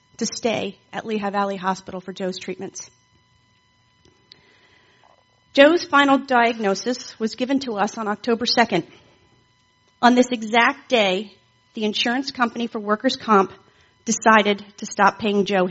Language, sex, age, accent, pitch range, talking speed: English, female, 40-59, American, 130-220 Hz, 130 wpm